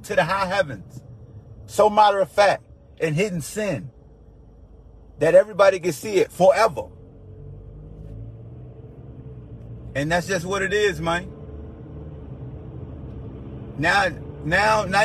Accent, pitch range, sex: American, 135-195 Hz, male